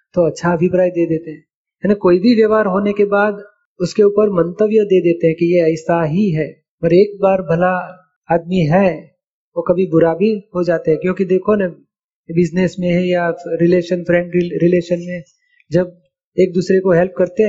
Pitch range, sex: 175-195 Hz, male